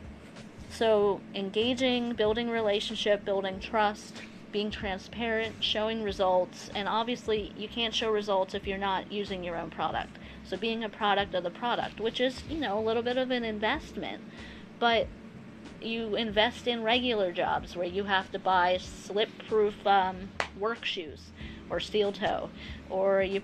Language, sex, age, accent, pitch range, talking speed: English, female, 30-49, American, 190-225 Hz, 155 wpm